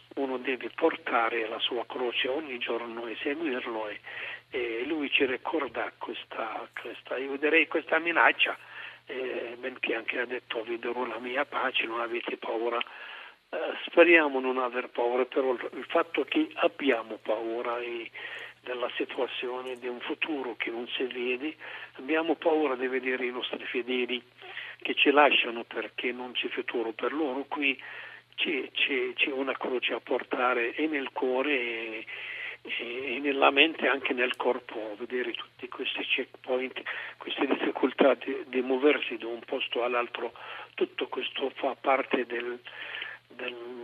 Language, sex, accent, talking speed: Italian, male, native, 145 wpm